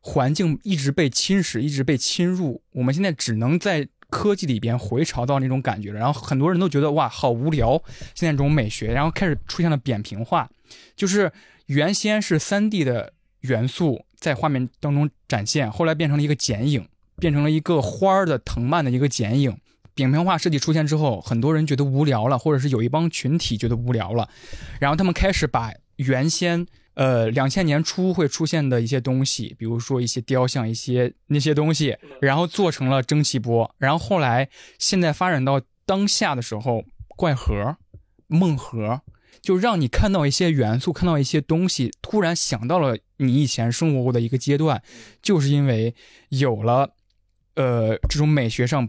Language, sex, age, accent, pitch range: Chinese, male, 20-39, native, 120-165 Hz